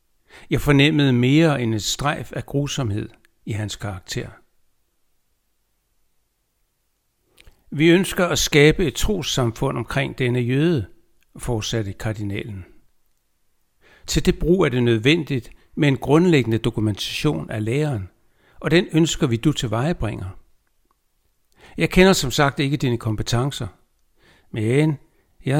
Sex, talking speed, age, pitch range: male, 115 wpm, 60-79, 110-150 Hz